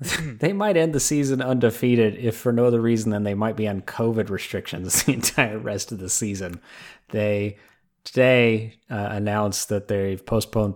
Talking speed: 175 wpm